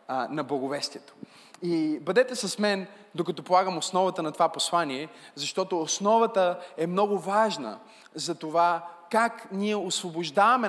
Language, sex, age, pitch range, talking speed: Bulgarian, male, 20-39, 170-210 Hz, 125 wpm